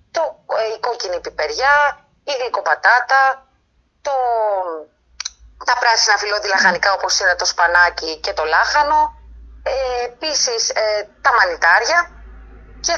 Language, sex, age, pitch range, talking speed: Greek, female, 30-49, 180-285 Hz, 115 wpm